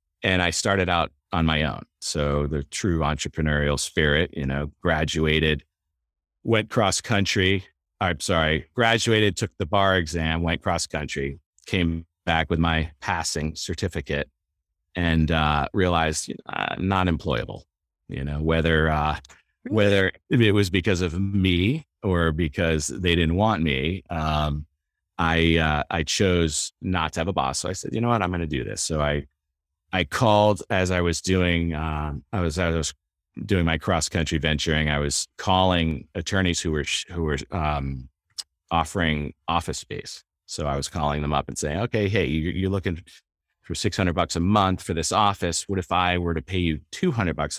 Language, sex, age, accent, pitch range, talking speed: English, male, 40-59, American, 75-90 Hz, 175 wpm